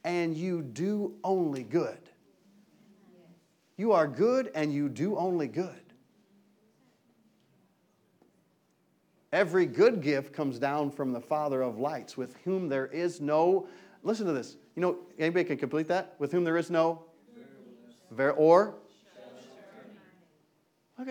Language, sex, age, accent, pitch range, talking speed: English, male, 40-59, American, 155-215 Hz, 130 wpm